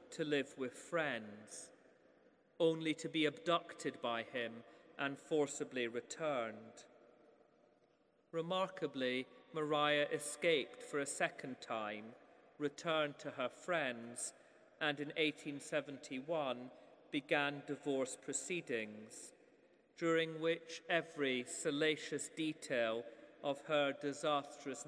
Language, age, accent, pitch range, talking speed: English, 40-59, British, 130-160 Hz, 90 wpm